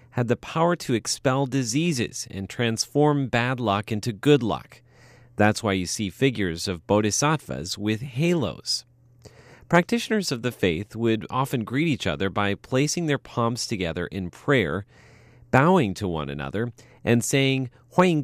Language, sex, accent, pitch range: English, male, American, 105-140 Hz